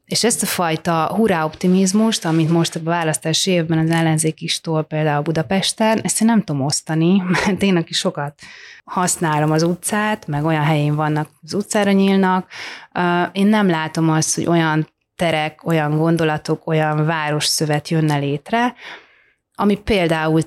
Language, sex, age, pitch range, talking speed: Hungarian, female, 30-49, 150-185 Hz, 145 wpm